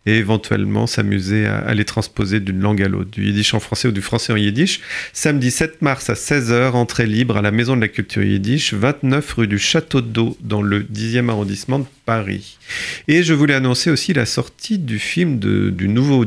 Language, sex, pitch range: French, male, 105-125 Hz